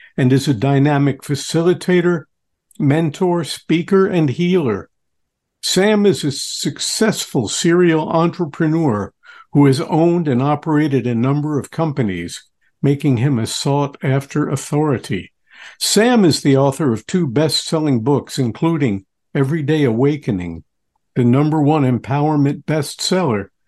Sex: male